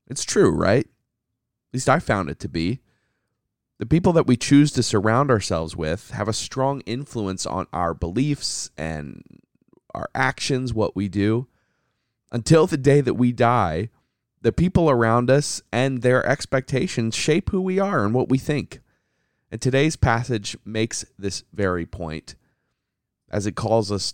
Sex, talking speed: male, 160 wpm